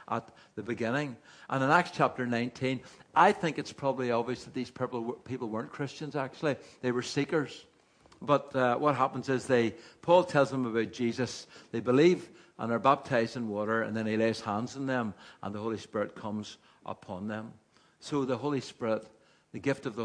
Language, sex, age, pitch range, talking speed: English, male, 60-79, 115-155 Hz, 185 wpm